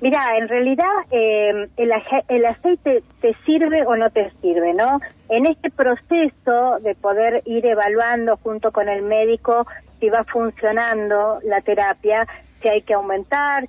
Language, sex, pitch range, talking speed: Spanish, female, 210-255 Hz, 150 wpm